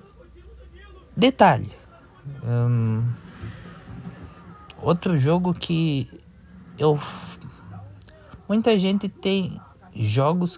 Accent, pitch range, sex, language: Brazilian, 95-150 Hz, male, Portuguese